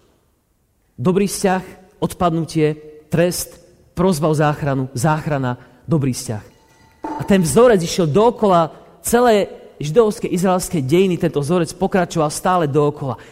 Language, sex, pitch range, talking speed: Slovak, male, 150-205 Hz, 105 wpm